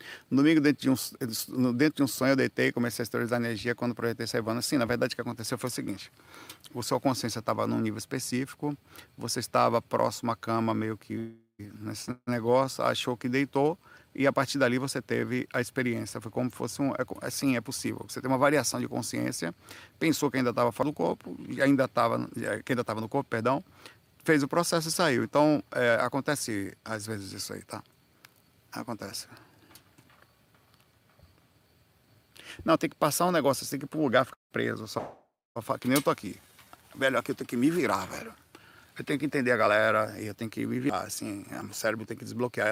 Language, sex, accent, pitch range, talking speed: Portuguese, male, Brazilian, 110-135 Hz, 210 wpm